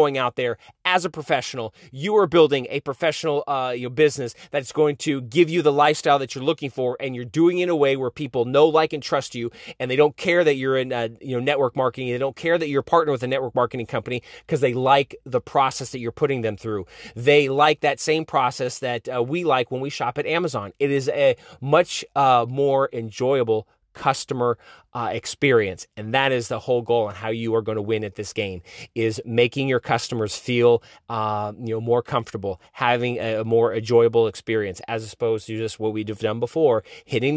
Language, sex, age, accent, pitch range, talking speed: English, male, 30-49, American, 115-150 Hz, 225 wpm